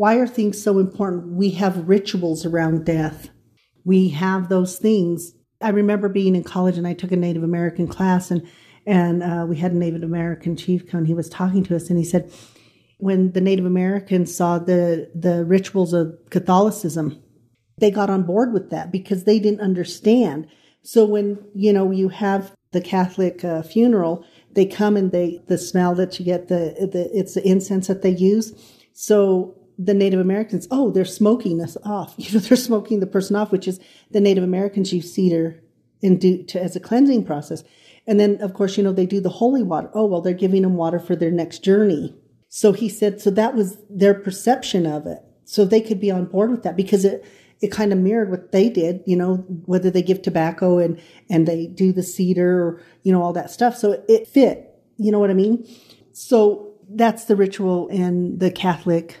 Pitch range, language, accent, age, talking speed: 175-205 Hz, English, American, 40-59, 205 wpm